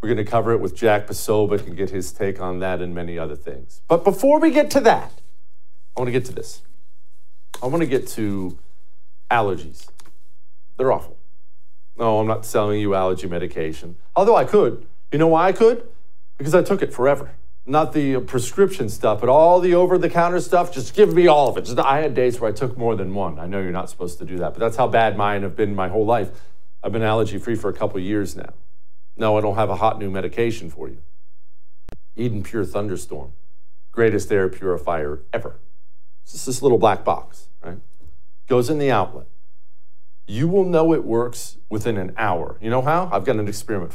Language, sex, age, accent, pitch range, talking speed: English, male, 40-59, American, 90-125 Hz, 210 wpm